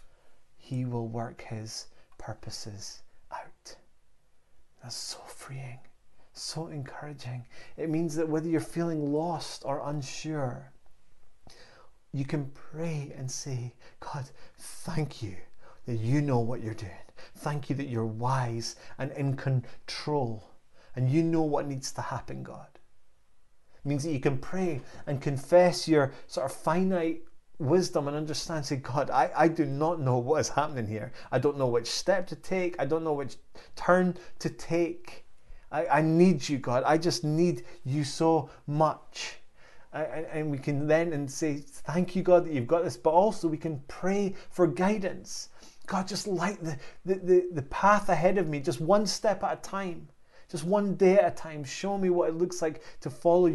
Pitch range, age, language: 130-170 Hz, 30-49, English